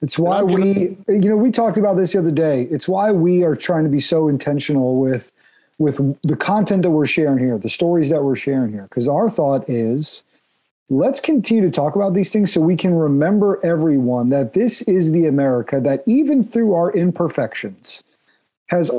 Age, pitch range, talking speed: 40-59, 140-190 Hz, 195 wpm